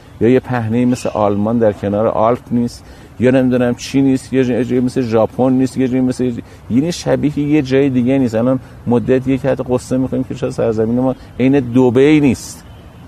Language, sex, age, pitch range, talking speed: Persian, male, 50-69, 95-130 Hz, 190 wpm